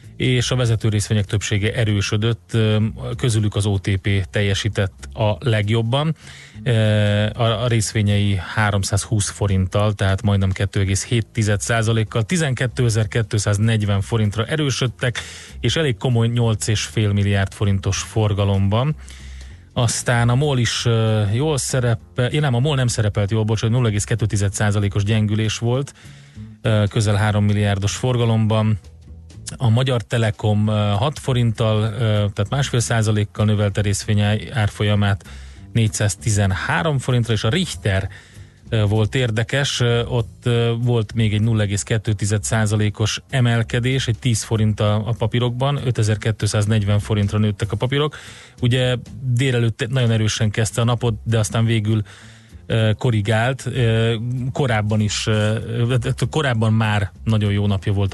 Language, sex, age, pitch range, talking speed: Hungarian, male, 30-49, 105-120 Hz, 105 wpm